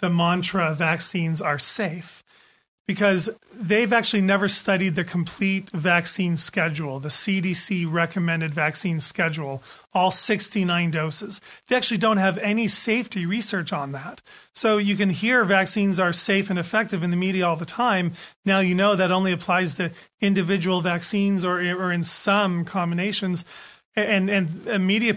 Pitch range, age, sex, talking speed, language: 175-205 Hz, 30-49, male, 155 wpm, English